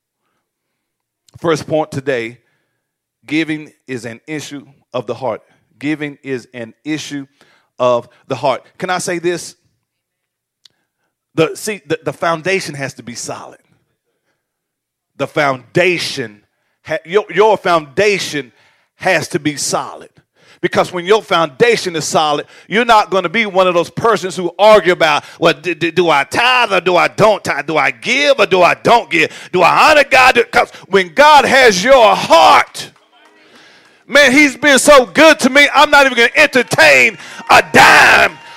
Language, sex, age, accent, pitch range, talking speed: English, male, 40-59, American, 155-250 Hz, 155 wpm